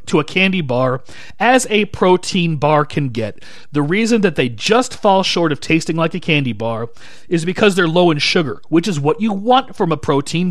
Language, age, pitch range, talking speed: English, 40-59, 145-185 Hz, 210 wpm